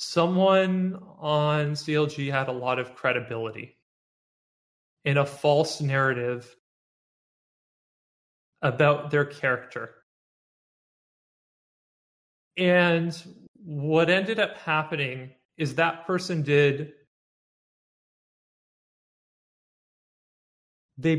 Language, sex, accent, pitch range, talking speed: English, male, American, 140-170 Hz, 70 wpm